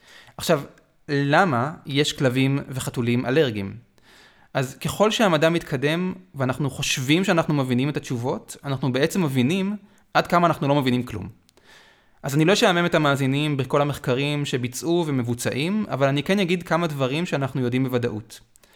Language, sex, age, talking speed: Hebrew, male, 20-39, 140 wpm